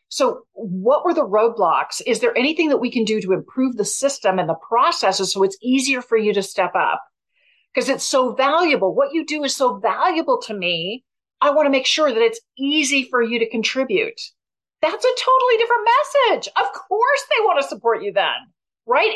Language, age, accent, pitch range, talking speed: English, 40-59, American, 220-365 Hz, 205 wpm